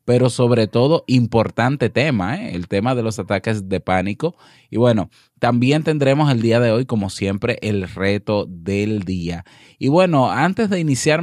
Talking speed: 165 wpm